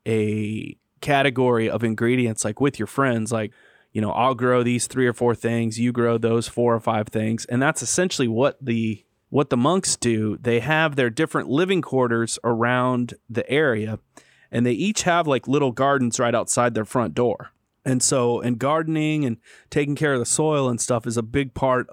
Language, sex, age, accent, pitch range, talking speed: English, male, 30-49, American, 115-135 Hz, 195 wpm